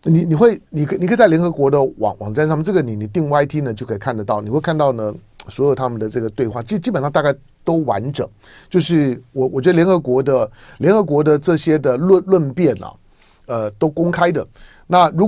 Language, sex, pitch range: Chinese, male, 120-160 Hz